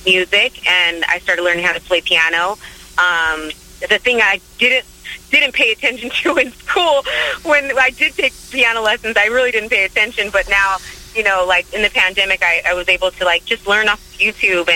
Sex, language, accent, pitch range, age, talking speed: female, English, American, 170-210 Hz, 30-49, 200 wpm